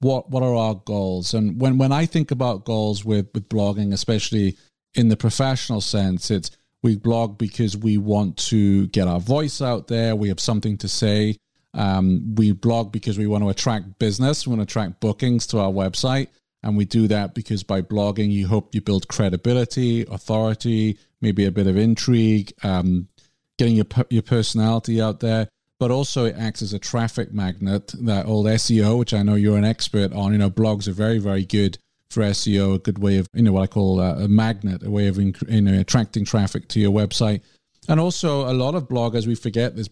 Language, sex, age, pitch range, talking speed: English, male, 40-59, 100-115 Hz, 205 wpm